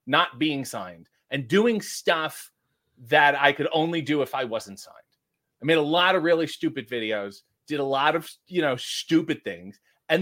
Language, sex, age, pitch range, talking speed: English, male, 30-49, 135-175 Hz, 190 wpm